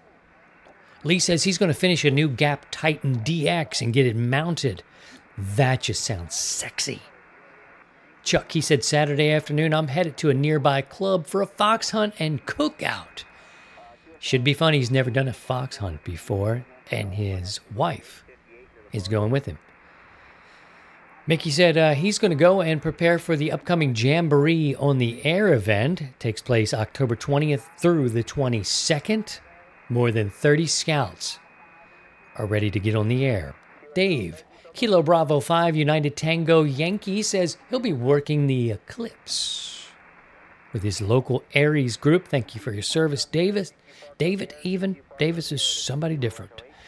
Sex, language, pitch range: male, English, 125-165 Hz